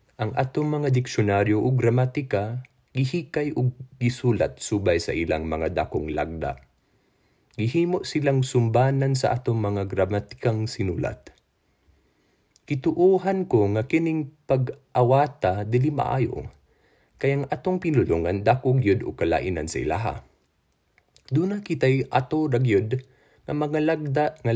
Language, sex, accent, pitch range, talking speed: Filipino, male, native, 105-145 Hz, 120 wpm